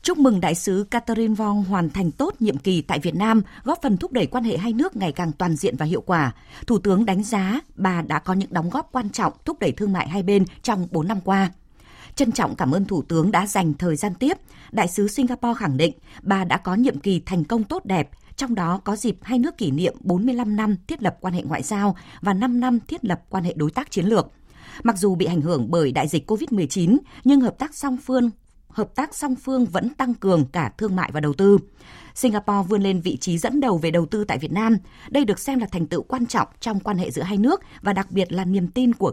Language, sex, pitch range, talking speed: Vietnamese, female, 180-240 Hz, 250 wpm